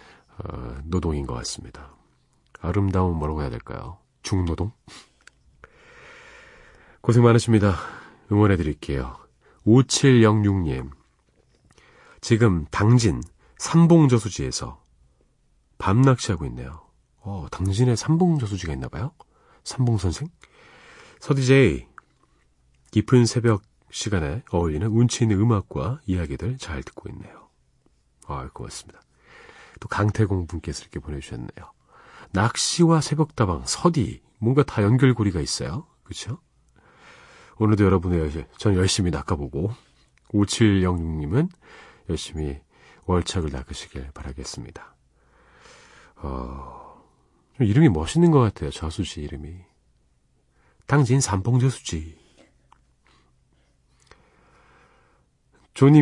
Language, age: Korean, 40-59